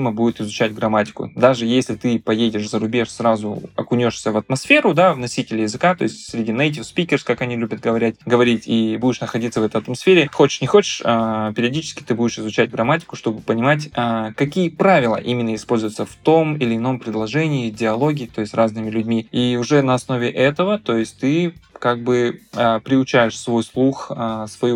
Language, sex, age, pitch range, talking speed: Russian, male, 20-39, 115-135 Hz, 180 wpm